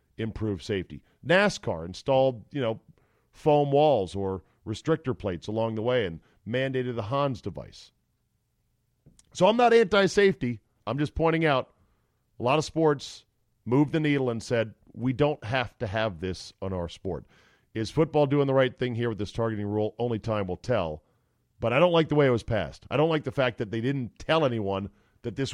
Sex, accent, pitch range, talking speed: male, American, 110-145 Hz, 190 wpm